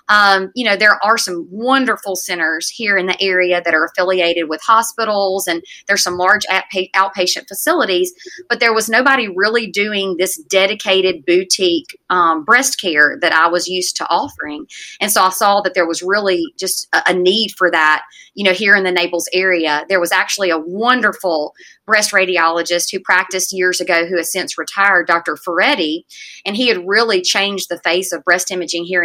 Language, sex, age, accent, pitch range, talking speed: English, female, 30-49, American, 170-200 Hz, 180 wpm